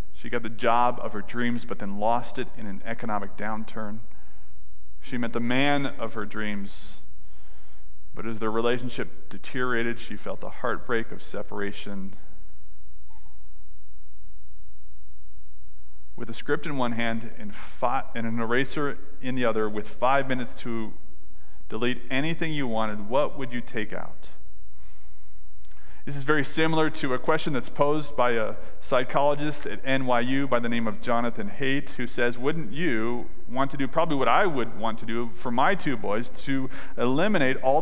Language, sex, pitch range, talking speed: English, male, 105-160 Hz, 155 wpm